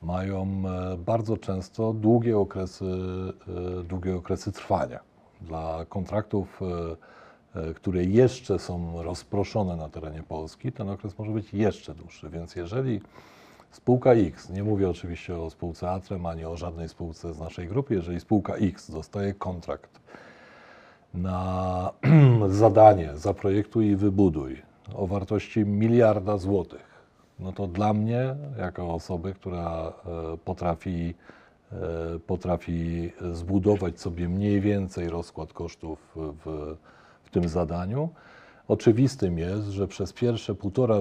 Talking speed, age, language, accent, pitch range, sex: 115 wpm, 40-59, Polish, native, 85-105 Hz, male